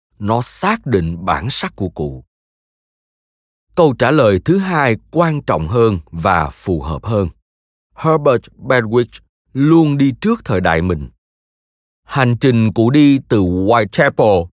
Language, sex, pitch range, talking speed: Vietnamese, male, 90-135 Hz, 135 wpm